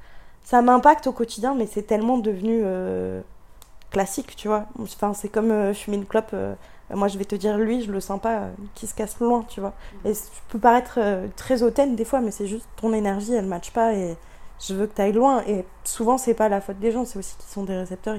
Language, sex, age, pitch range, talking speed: French, female, 20-39, 190-225 Hz, 245 wpm